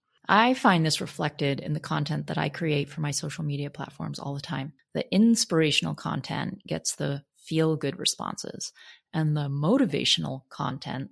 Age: 30-49